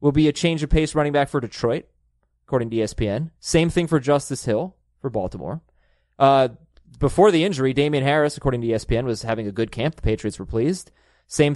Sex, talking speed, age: male, 200 wpm, 20-39